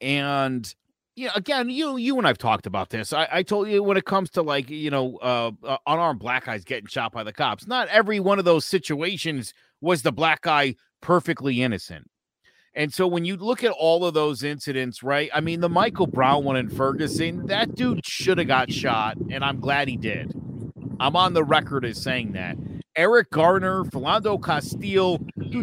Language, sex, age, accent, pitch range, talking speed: English, male, 50-69, American, 135-185 Hz, 200 wpm